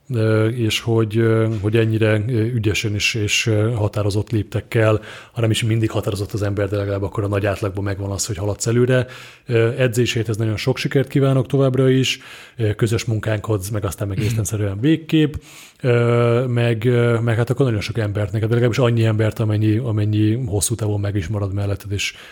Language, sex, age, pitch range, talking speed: Hungarian, male, 30-49, 105-125 Hz, 165 wpm